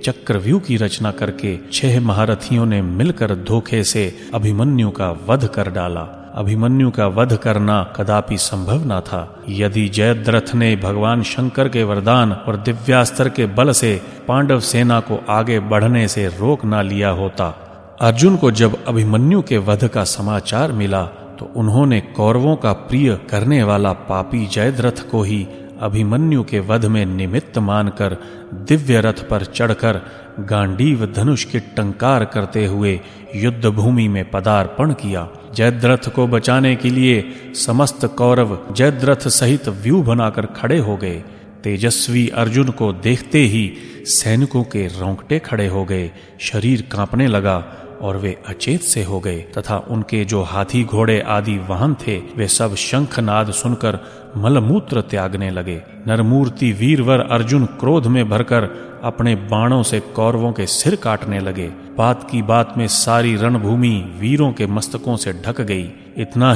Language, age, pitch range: Hindi, 30-49, 100-125 Hz